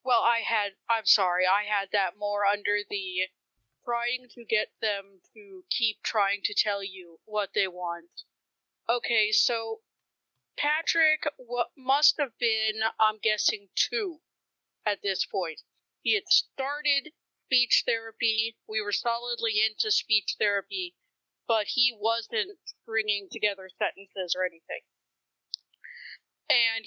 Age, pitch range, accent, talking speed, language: 30-49, 205-260 Hz, American, 125 wpm, English